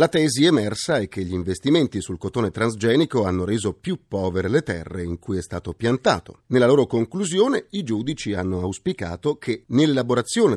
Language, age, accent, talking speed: Italian, 40-59, native, 170 wpm